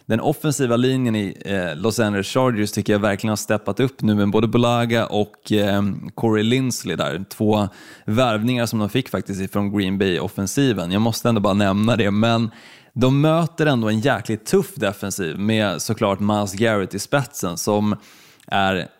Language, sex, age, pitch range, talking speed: Swedish, male, 20-39, 100-120 Hz, 165 wpm